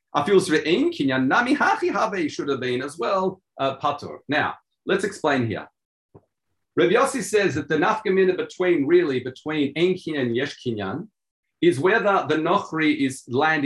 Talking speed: 145 wpm